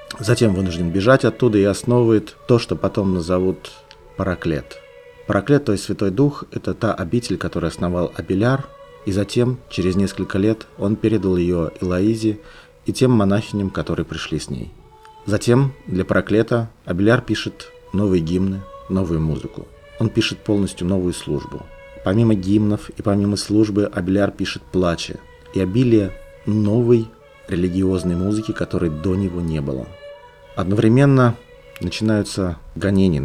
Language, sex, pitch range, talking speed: Russian, male, 90-110 Hz, 130 wpm